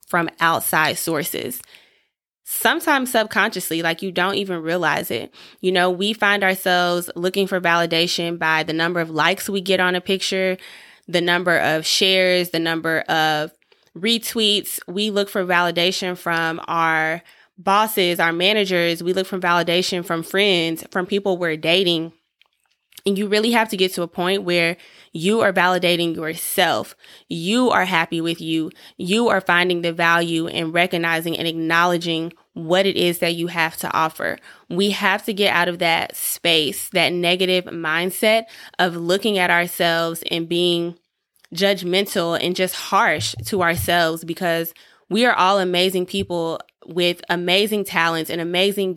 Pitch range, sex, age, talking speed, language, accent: 165-190 Hz, female, 20-39, 155 wpm, English, American